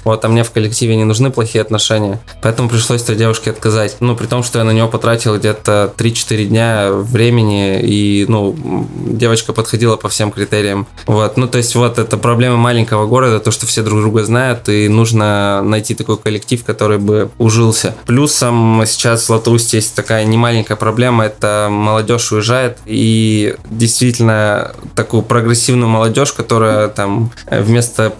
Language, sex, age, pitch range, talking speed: Russian, male, 20-39, 110-120 Hz, 160 wpm